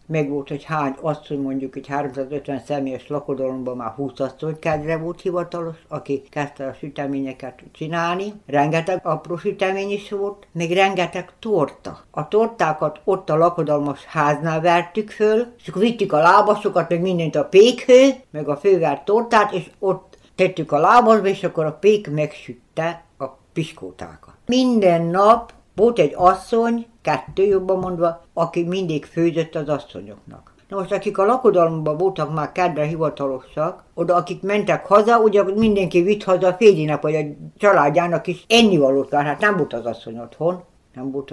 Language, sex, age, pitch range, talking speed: Hungarian, female, 60-79, 150-195 Hz, 155 wpm